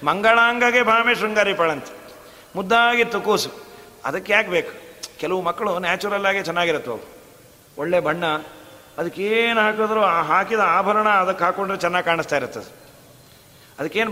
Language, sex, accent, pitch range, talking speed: Kannada, male, native, 160-205 Hz, 115 wpm